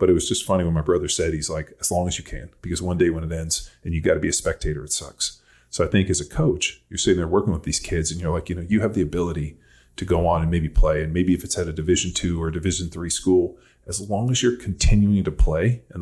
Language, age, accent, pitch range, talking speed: English, 30-49, American, 80-95 Hz, 300 wpm